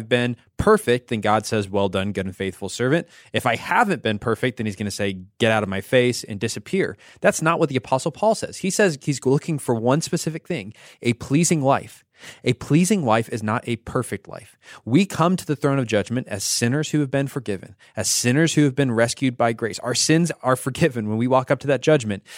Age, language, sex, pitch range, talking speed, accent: 20-39, English, male, 115-155 Hz, 230 wpm, American